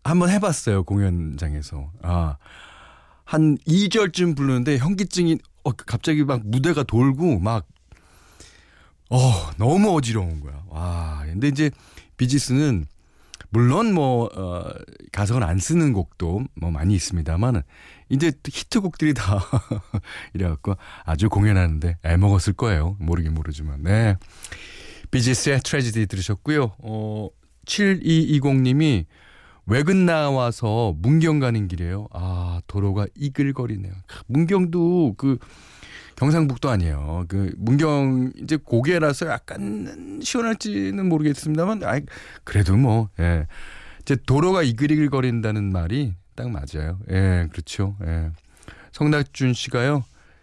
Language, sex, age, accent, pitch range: Korean, male, 40-59, native, 90-145 Hz